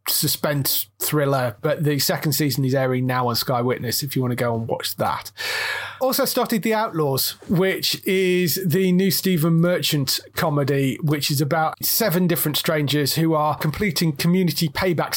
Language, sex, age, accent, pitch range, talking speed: English, male, 30-49, British, 140-170 Hz, 165 wpm